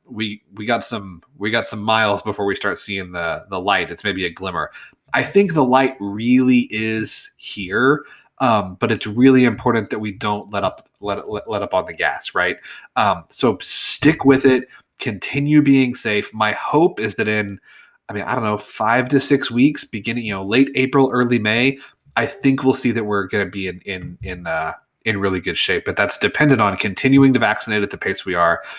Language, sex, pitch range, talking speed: English, male, 105-130 Hz, 215 wpm